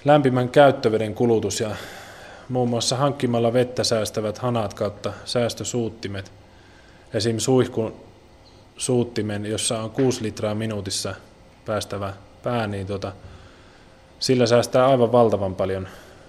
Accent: native